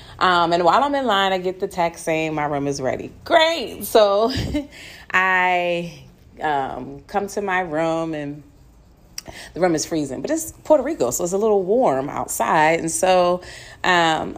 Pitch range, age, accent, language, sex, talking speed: 160-210 Hz, 30-49, American, English, female, 170 wpm